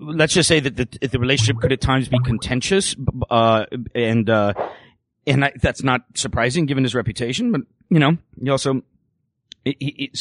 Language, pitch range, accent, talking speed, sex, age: English, 110-140 Hz, American, 175 wpm, male, 40-59